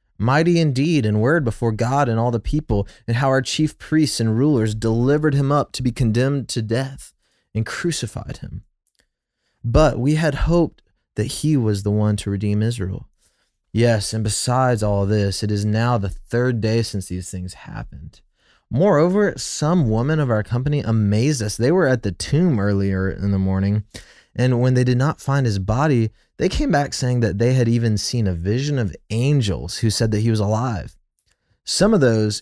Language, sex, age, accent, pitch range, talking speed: English, male, 20-39, American, 105-135 Hz, 190 wpm